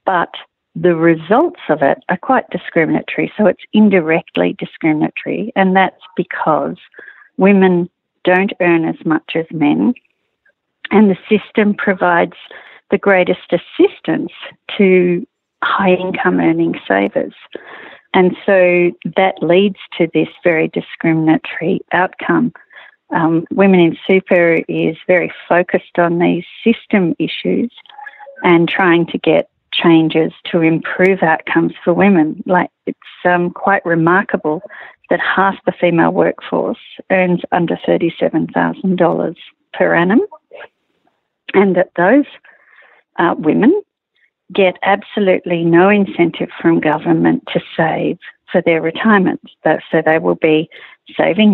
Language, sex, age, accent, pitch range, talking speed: English, female, 50-69, Australian, 165-200 Hz, 120 wpm